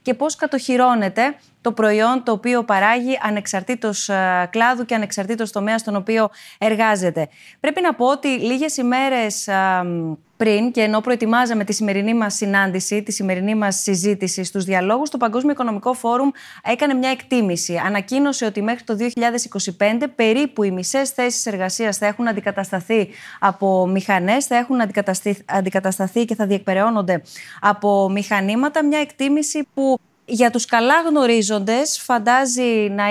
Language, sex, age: Greek, female, 20-39